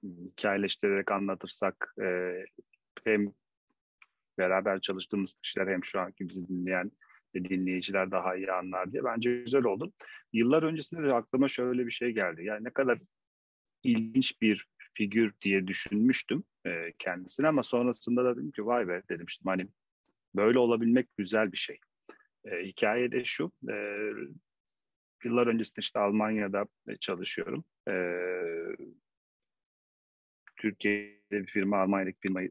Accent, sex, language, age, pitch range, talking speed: native, male, Turkish, 40-59, 95-120 Hz, 125 wpm